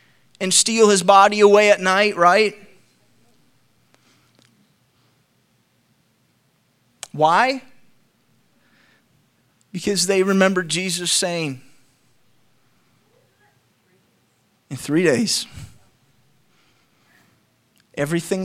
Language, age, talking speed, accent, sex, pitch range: English, 30-49, 60 wpm, American, male, 175-250 Hz